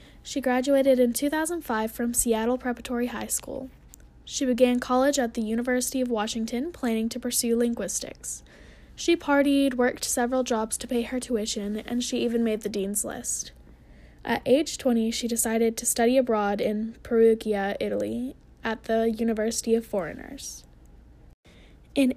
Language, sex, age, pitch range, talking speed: English, female, 10-29, 220-255 Hz, 145 wpm